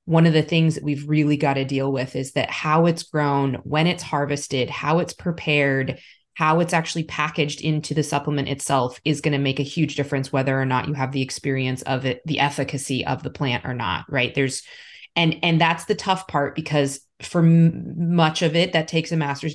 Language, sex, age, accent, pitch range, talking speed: English, female, 20-39, American, 140-165 Hz, 220 wpm